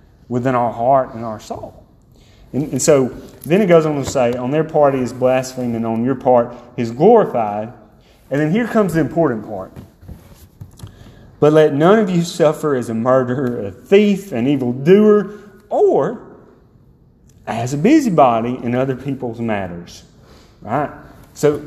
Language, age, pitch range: English, 30-49, 130-195 Hz